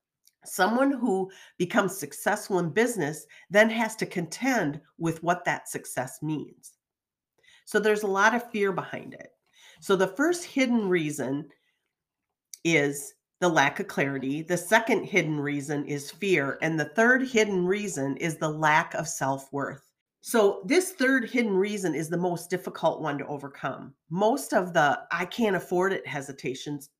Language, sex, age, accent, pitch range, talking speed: English, female, 40-59, American, 150-210 Hz, 155 wpm